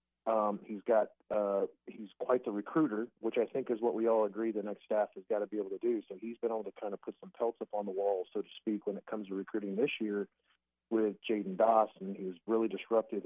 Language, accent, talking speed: English, American, 260 wpm